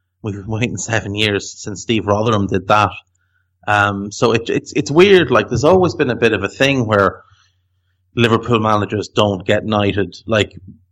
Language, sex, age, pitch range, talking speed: English, male, 30-49, 95-110 Hz, 175 wpm